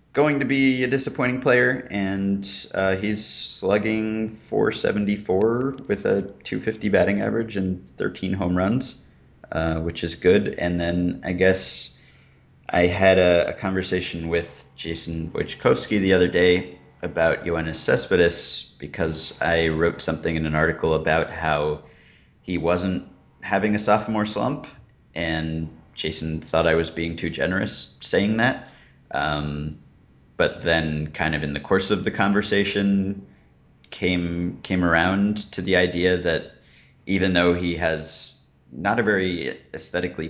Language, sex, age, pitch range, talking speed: English, male, 30-49, 80-105 Hz, 140 wpm